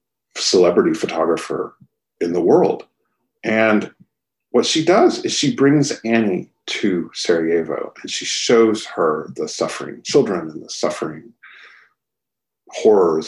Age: 40-59